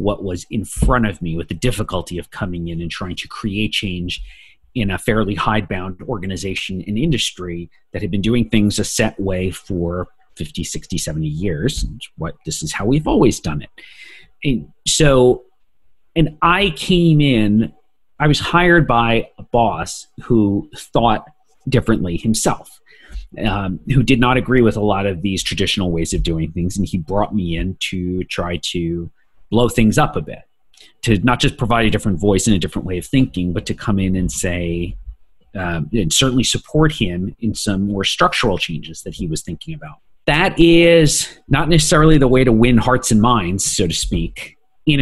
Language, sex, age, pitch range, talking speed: English, male, 40-59, 90-125 Hz, 185 wpm